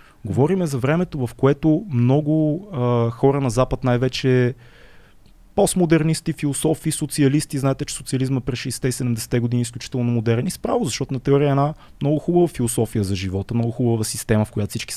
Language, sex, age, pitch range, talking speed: Bulgarian, male, 20-39, 115-145 Hz, 160 wpm